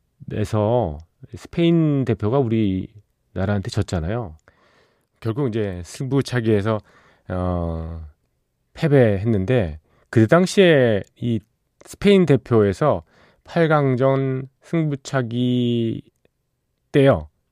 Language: Korean